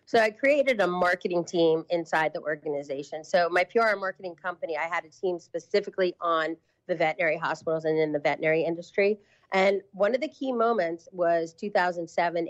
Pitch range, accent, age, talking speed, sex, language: 170-220 Hz, American, 40-59, 175 wpm, female, English